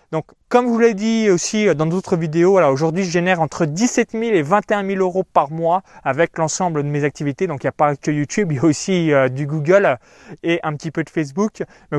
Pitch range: 160-215 Hz